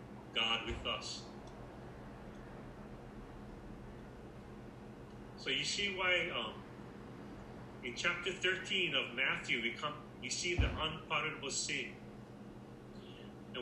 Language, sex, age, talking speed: English, male, 40-59, 95 wpm